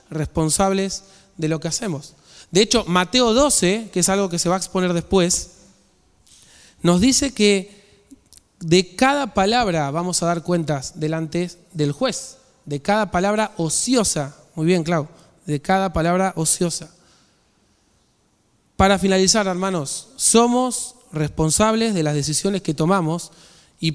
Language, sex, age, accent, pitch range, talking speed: Spanish, male, 20-39, Argentinian, 160-195 Hz, 135 wpm